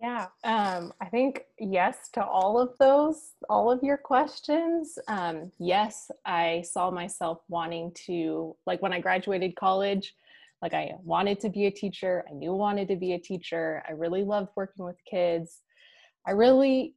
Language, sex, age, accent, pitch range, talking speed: English, female, 20-39, American, 180-230 Hz, 170 wpm